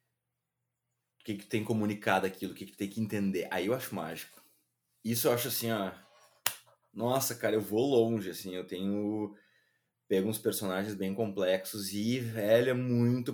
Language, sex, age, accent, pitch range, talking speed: Portuguese, male, 20-39, Brazilian, 100-140 Hz, 160 wpm